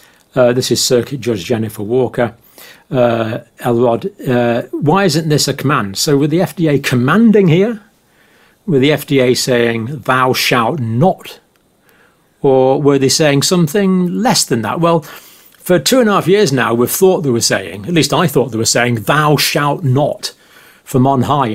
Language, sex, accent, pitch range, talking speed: English, male, British, 120-155 Hz, 175 wpm